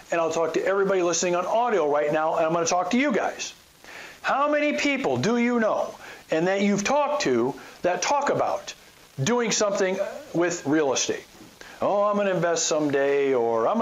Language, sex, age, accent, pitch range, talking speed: English, male, 50-69, American, 145-210 Hz, 190 wpm